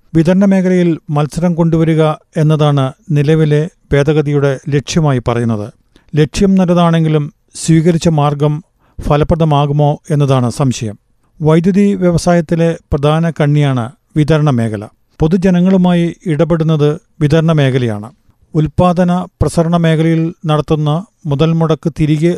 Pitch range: 145-170 Hz